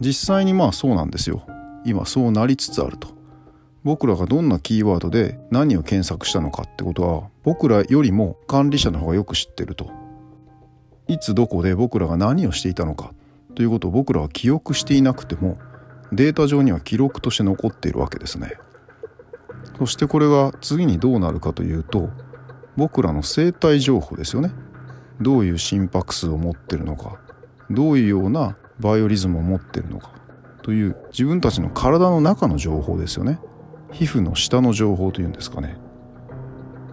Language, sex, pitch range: Japanese, male, 90-135 Hz